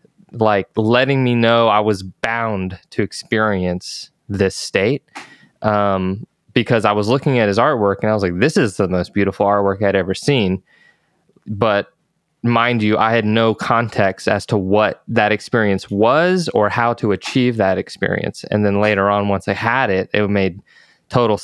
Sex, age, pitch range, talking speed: male, 20-39, 100-120 Hz, 175 wpm